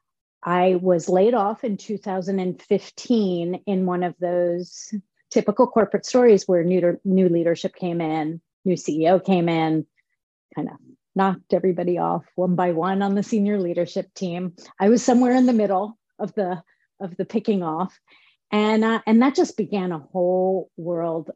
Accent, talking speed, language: American, 160 wpm, English